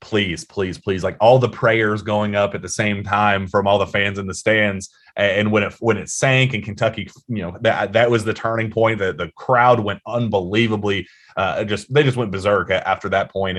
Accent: American